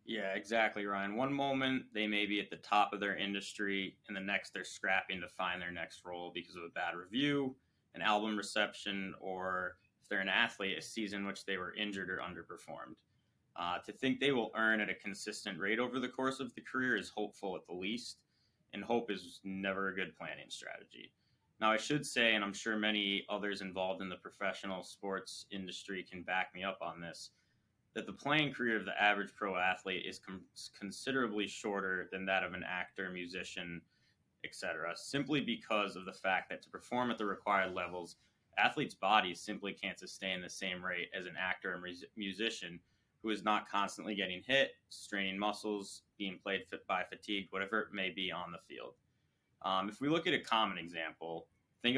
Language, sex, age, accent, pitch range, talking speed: English, male, 20-39, American, 95-110 Hz, 195 wpm